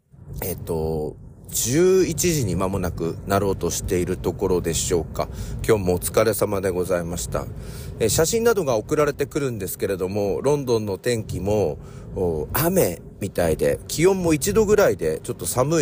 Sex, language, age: male, Japanese, 40-59